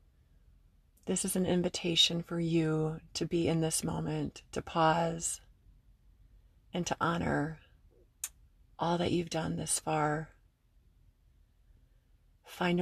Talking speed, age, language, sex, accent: 110 wpm, 30-49, English, female, American